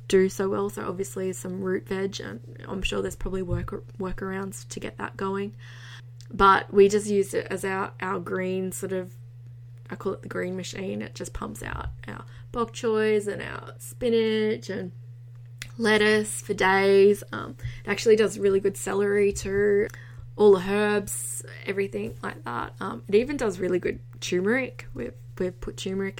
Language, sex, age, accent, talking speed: English, female, 20-39, Australian, 175 wpm